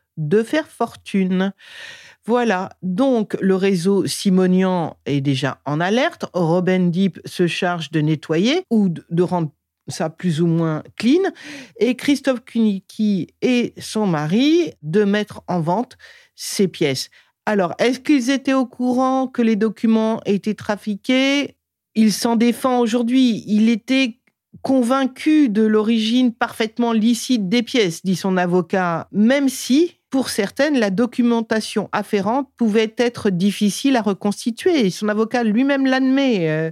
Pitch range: 180-240 Hz